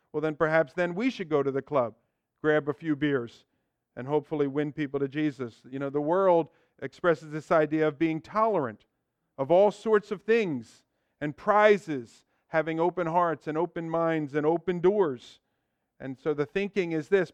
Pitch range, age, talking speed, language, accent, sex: 135-165 Hz, 50-69, 180 wpm, English, American, male